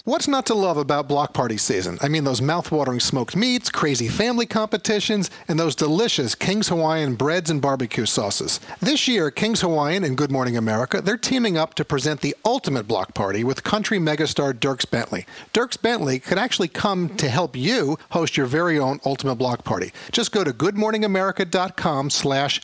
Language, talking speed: English, 180 wpm